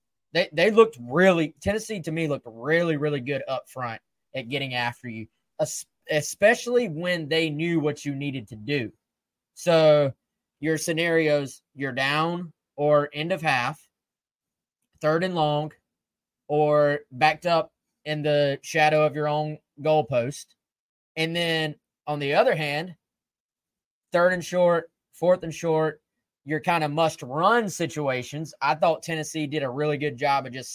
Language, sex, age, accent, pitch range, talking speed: English, male, 20-39, American, 145-165 Hz, 150 wpm